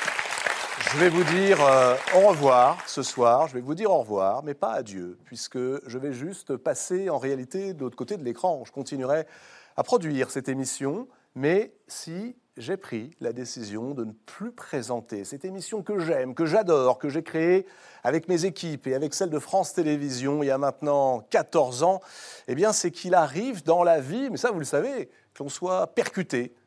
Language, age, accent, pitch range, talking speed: French, 40-59, French, 130-185 Hz, 195 wpm